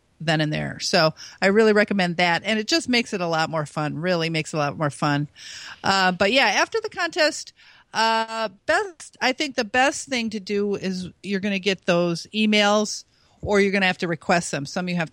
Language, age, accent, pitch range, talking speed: English, 50-69, American, 170-220 Hz, 225 wpm